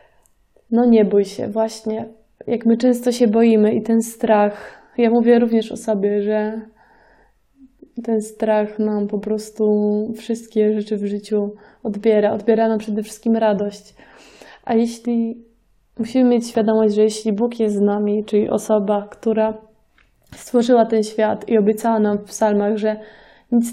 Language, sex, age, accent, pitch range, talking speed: Polish, female, 20-39, native, 210-230 Hz, 145 wpm